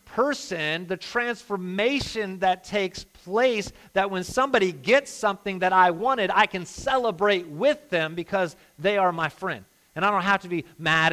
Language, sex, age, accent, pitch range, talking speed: English, male, 40-59, American, 110-185 Hz, 165 wpm